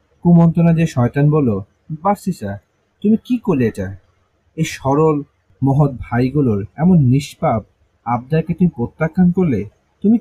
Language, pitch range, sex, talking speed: Bengali, 105-155 Hz, male, 120 wpm